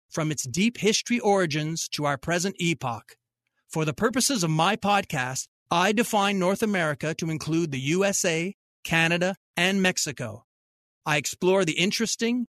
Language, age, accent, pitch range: English, 40-59, American, 150-205 Hz